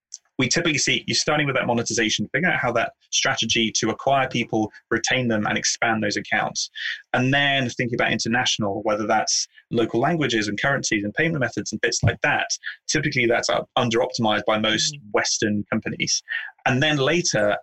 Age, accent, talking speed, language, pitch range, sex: 30-49, British, 170 wpm, English, 110-135 Hz, male